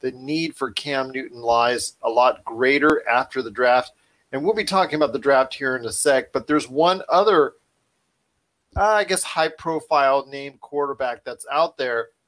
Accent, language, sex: American, English, male